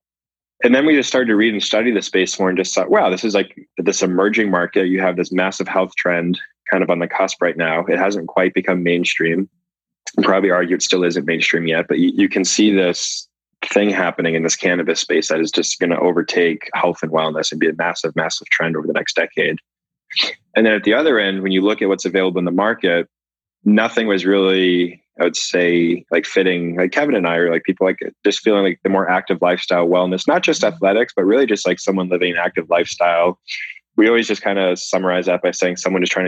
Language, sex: English, male